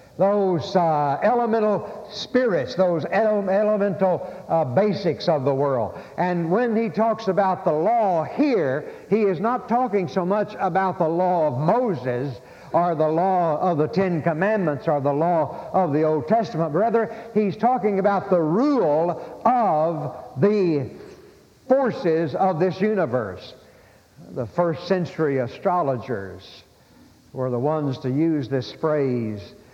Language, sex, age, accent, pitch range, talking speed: English, male, 60-79, American, 140-190 Hz, 135 wpm